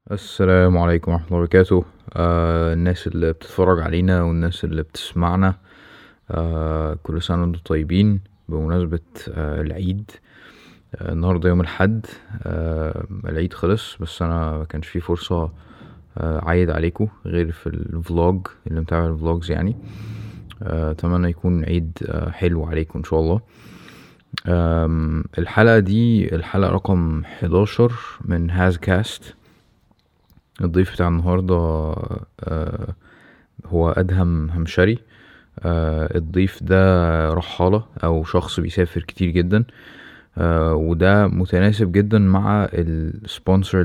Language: Arabic